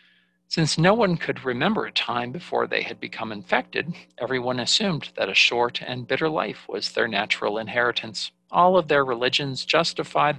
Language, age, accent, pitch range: English, 50-69, American, 110-160 Hz